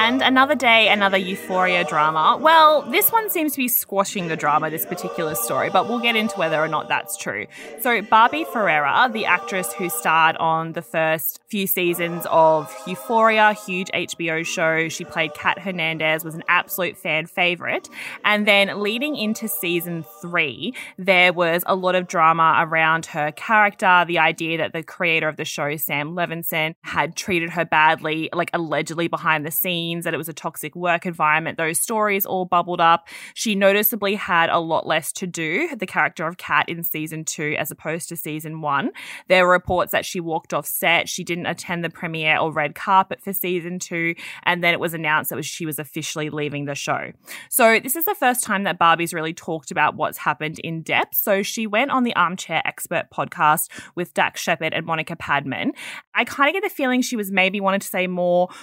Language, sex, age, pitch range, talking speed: English, female, 20-39, 160-200 Hz, 195 wpm